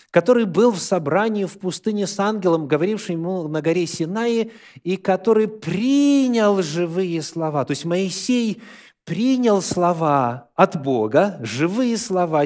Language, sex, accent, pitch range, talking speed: Russian, male, native, 135-200 Hz, 130 wpm